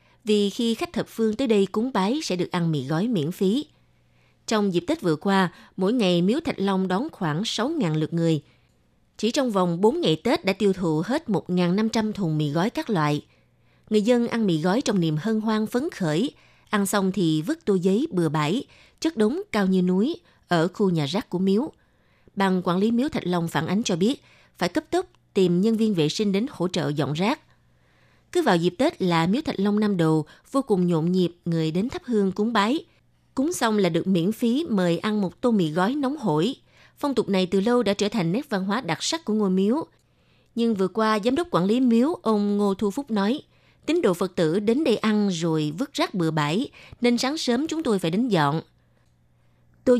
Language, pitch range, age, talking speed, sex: Vietnamese, 175-230 Hz, 20-39, 220 wpm, female